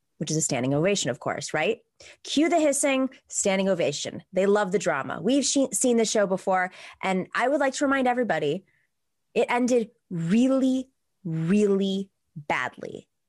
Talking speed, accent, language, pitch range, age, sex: 155 wpm, American, English, 175-250 Hz, 20-39, female